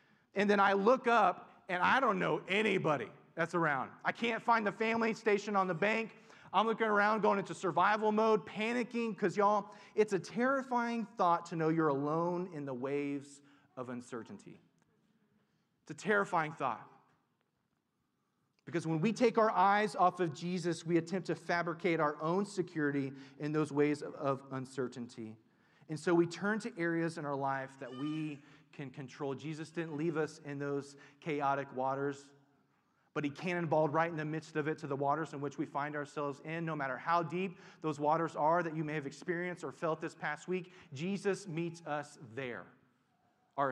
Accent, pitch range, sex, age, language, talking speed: American, 140-185 Hz, male, 30-49, English, 180 wpm